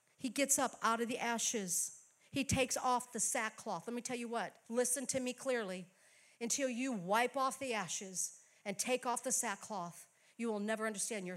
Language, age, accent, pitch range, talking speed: English, 50-69, American, 210-290 Hz, 195 wpm